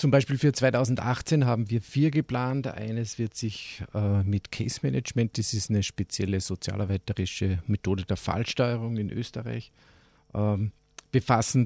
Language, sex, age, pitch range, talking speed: German, male, 50-69, 105-125 Hz, 130 wpm